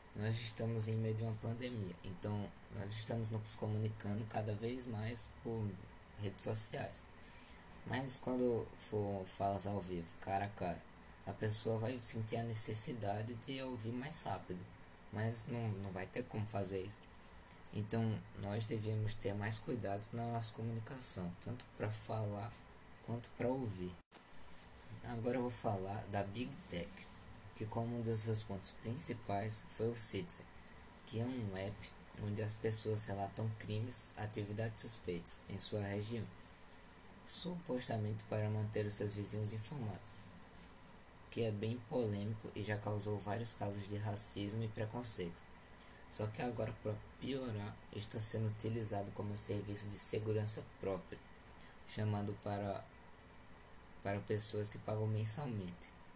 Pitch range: 100-115 Hz